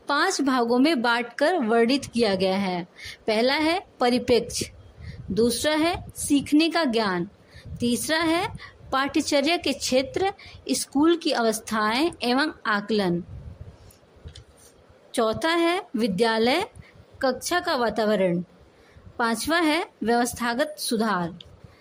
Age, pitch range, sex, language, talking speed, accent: 20-39, 225-315 Hz, female, Hindi, 100 wpm, native